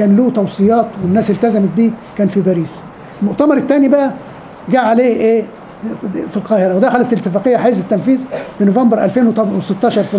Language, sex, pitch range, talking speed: Arabic, male, 200-240 Hz, 145 wpm